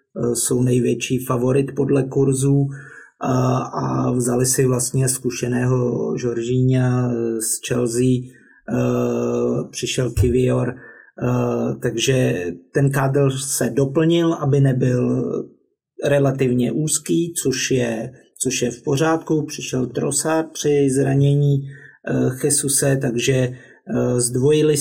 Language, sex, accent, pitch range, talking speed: Czech, male, native, 125-135 Hz, 100 wpm